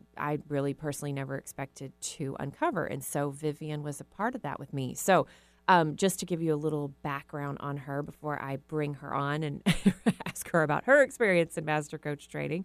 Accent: American